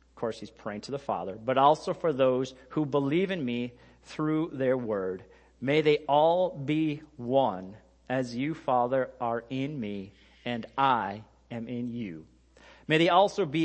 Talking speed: 165 wpm